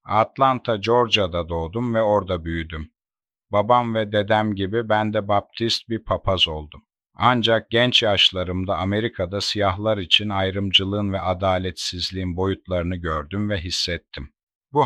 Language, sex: Turkish, male